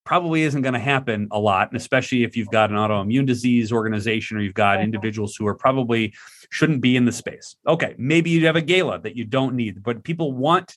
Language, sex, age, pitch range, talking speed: English, male, 30-49, 110-145 Hz, 230 wpm